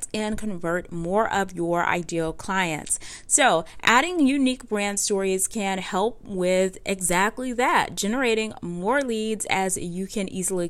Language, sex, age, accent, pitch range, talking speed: English, female, 30-49, American, 185-225 Hz, 135 wpm